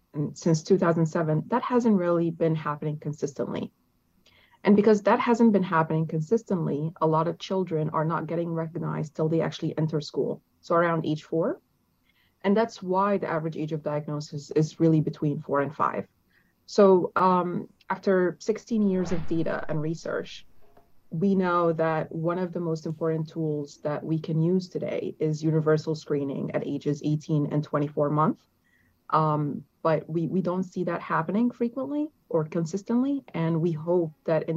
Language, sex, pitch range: English, female, 155-180 Hz